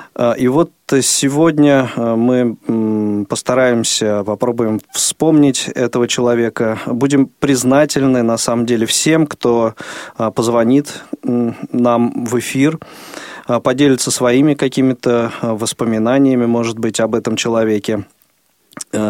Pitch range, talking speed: 110-135 Hz, 90 wpm